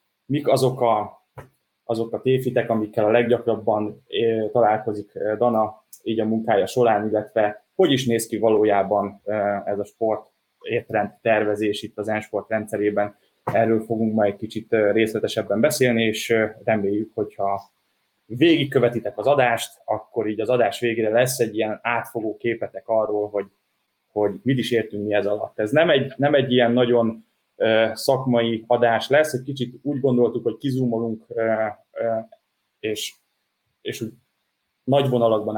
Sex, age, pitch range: male, 20-39, 110-125 Hz